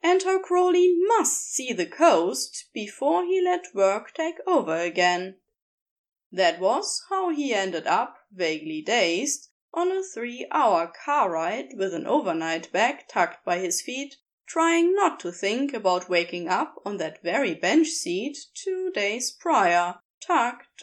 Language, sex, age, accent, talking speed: English, female, 20-39, German, 145 wpm